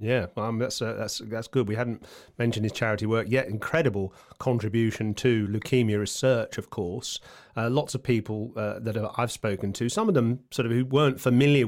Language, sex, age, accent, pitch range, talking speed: English, male, 30-49, British, 110-130 Hz, 210 wpm